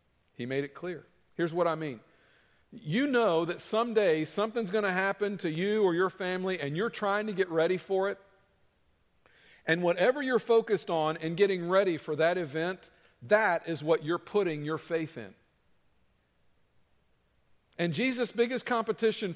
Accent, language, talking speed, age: American, English, 160 wpm, 50-69